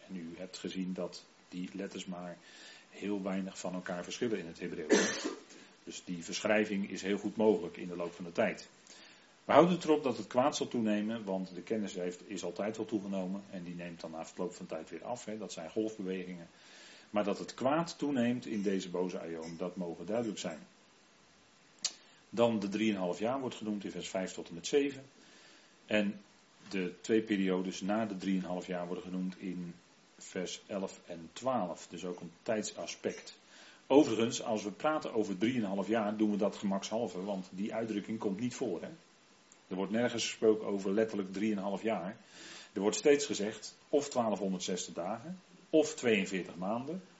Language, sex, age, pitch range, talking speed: Dutch, male, 40-59, 90-110 Hz, 180 wpm